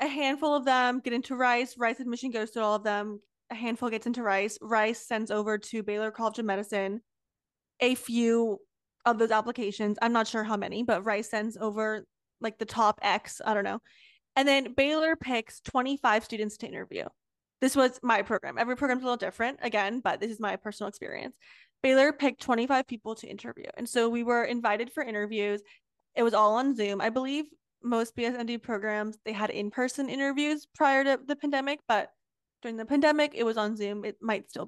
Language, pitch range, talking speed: English, 220-275 Hz, 195 wpm